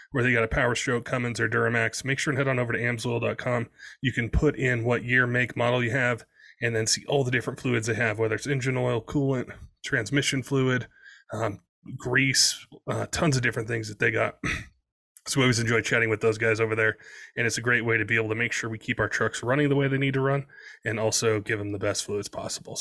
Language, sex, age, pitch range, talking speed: English, male, 20-39, 110-130 Hz, 245 wpm